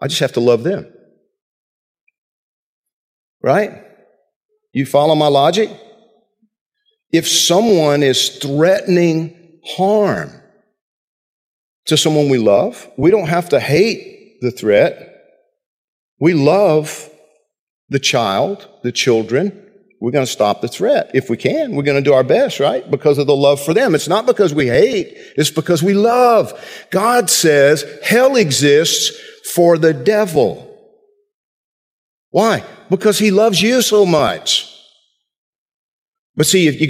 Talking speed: 130 wpm